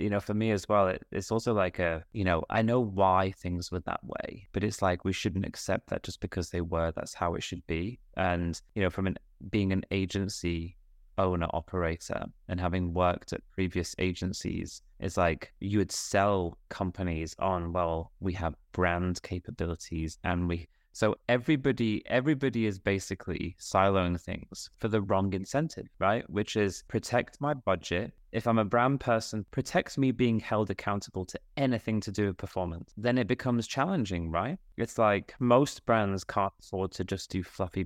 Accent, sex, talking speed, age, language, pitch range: British, male, 180 wpm, 20-39, English, 90-105 Hz